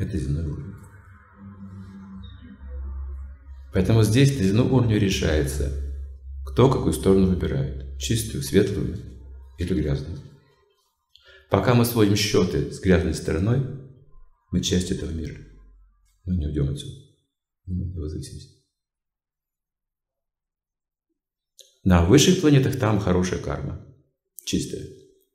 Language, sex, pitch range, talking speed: Russian, male, 75-105 Hz, 95 wpm